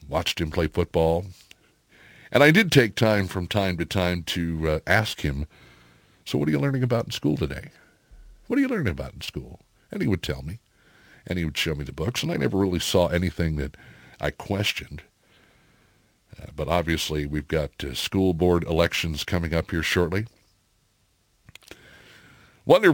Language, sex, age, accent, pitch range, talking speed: English, male, 60-79, American, 80-110 Hz, 180 wpm